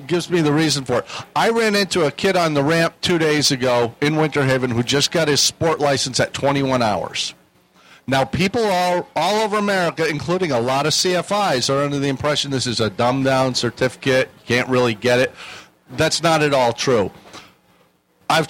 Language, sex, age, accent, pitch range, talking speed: English, male, 50-69, American, 125-165 Hz, 195 wpm